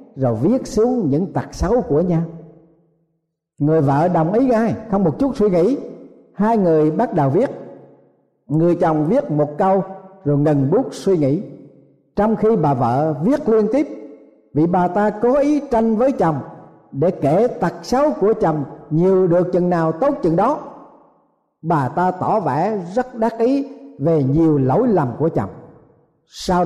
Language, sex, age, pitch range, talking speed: Vietnamese, male, 50-69, 145-210 Hz, 170 wpm